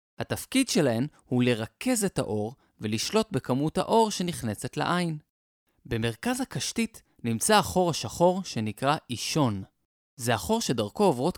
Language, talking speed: Hebrew, 115 wpm